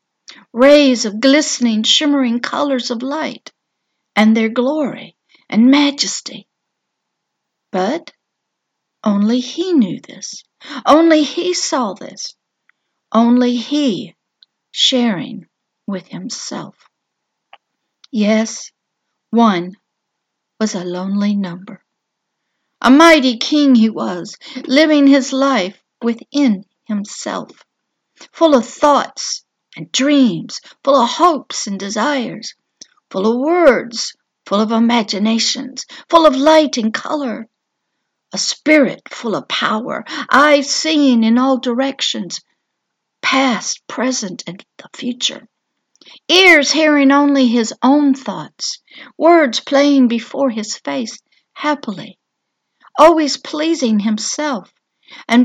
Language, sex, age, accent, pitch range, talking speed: English, female, 60-79, American, 225-290 Hz, 100 wpm